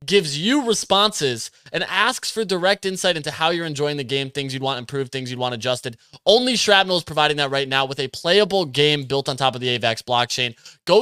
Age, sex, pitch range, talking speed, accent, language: 20-39, male, 135-175 Hz, 225 wpm, American, English